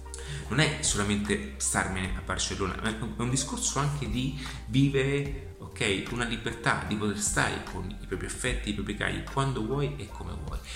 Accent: native